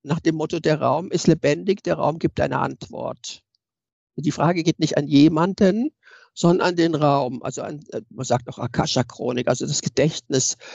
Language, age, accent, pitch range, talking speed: German, 60-79, German, 145-175 Hz, 165 wpm